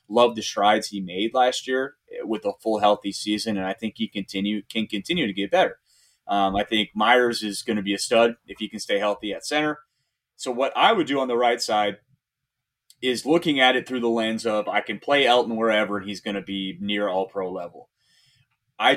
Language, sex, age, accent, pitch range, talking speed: English, male, 30-49, American, 105-125 Hz, 225 wpm